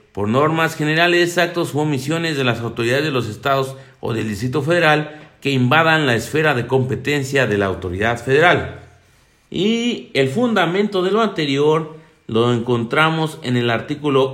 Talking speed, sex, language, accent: 155 wpm, male, Spanish, Mexican